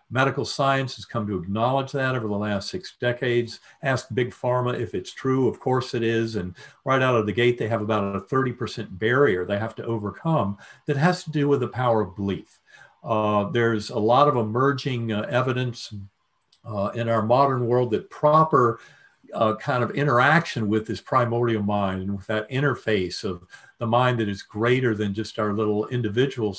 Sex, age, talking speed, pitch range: male, 50-69, 190 wpm, 105-125 Hz